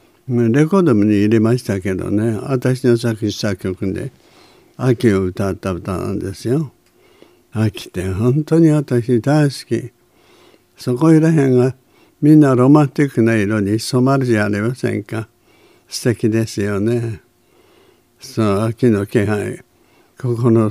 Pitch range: 105-125 Hz